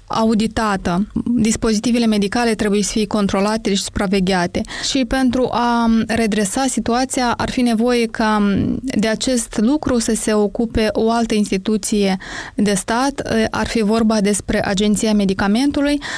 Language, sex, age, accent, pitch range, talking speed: Romanian, female, 20-39, native, 210-240 Hz, 130 wpm